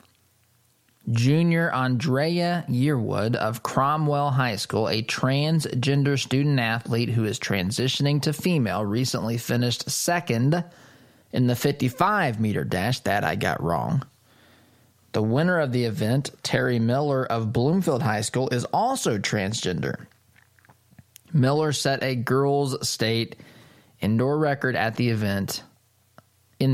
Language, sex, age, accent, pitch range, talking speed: English, male, 20-39, American, 115-145 Hz, 120 wpm